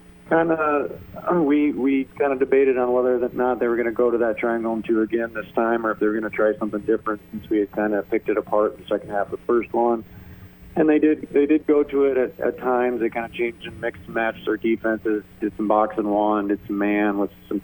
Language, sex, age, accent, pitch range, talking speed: English, male, 40-59, American, 105-120 Hz, 270 wpm